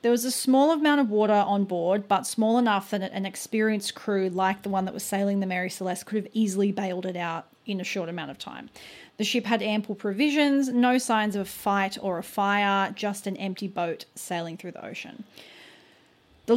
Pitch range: 190-225 Hz